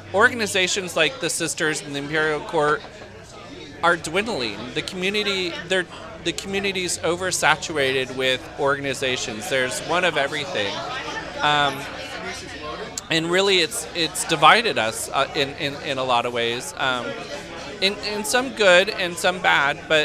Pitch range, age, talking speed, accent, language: 140-180 Hz, 30-49, 140 wpm, American, English